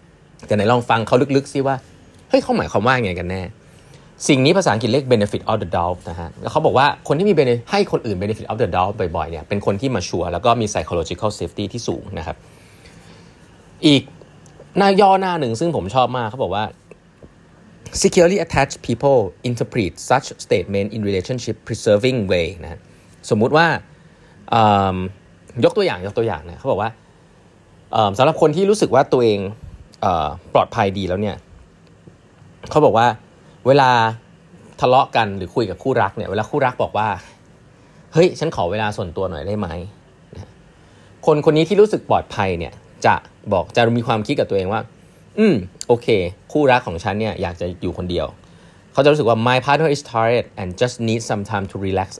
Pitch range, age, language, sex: 100-150 Hz, 30-49, Thai, male